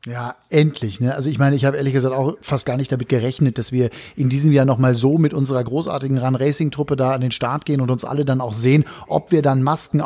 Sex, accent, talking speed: male, German, 250 wpm